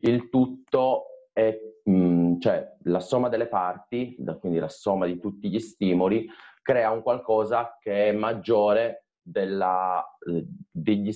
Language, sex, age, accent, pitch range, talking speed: Italian, male, 30-49, native, 90-110 Hz, 120 wpm